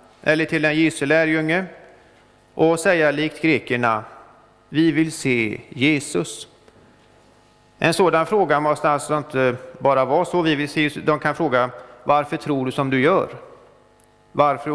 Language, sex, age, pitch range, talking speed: Swedish, male, 30-49, 130-165 Hz, 140 wpm